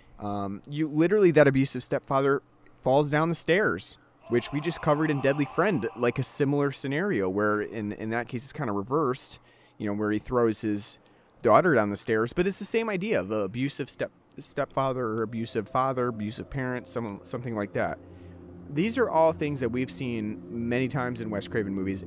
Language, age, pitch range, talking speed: English, 30-49, 90-130 Hz, 195 wpm